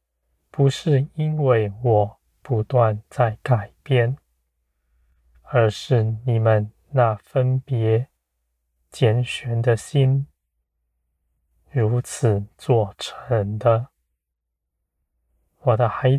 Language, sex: Chinese, male